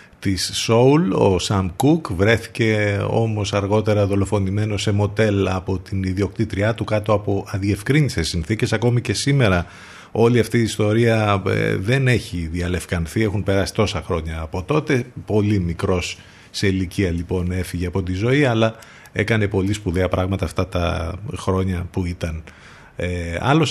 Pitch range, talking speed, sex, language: 90-120 Hz, 140 wpm, male, Greek